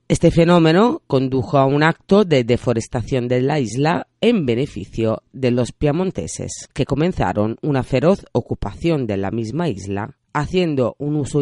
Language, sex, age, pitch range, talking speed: Spanish, female, 40-59, 115-155 Hz, 145 wpm